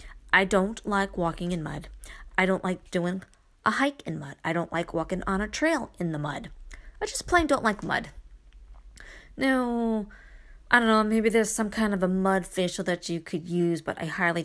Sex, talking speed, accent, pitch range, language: female, 205 wpm, American, 175-235 Hz, English